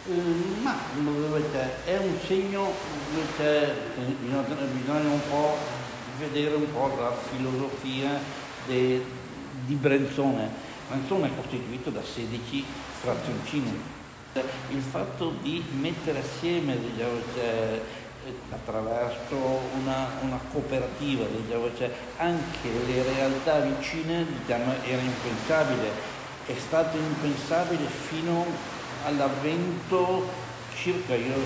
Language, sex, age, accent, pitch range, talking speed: Italian, male, 60-79, native, 125-150 Hz, 95 wpm